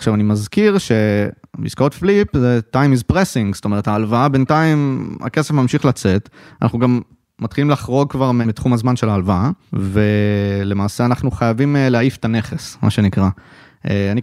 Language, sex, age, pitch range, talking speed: Hebrew, male, 20-39, 115-140 Hz, 145 wpm